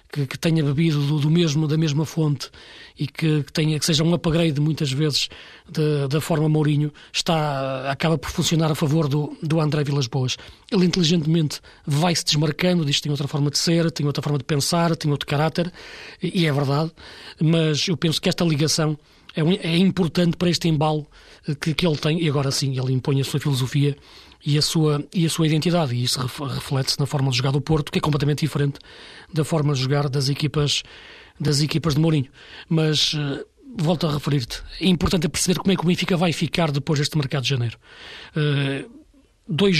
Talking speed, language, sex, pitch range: 195 wpm, Portuguese, male, 145-170 Hz